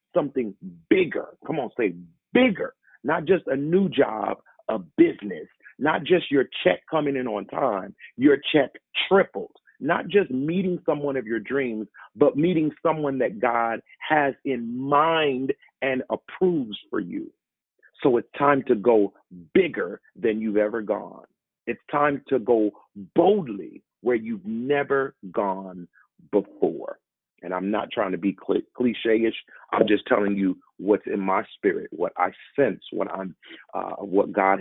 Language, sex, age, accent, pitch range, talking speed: English, male, 40-59, American, 110-170 Hz, 150 wpm